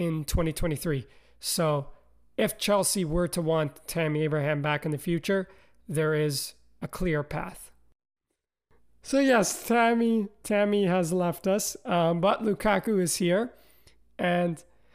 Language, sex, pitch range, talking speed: English, male, 165-215 Hz, 130 wpm